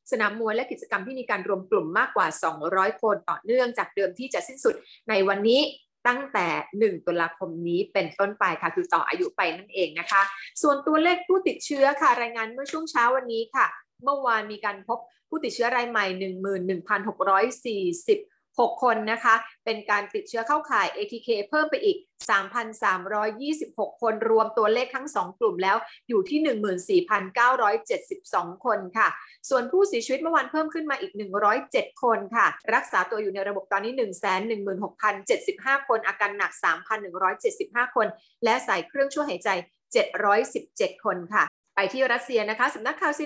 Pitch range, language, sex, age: 205-285 Hz, Thai, female, 30-49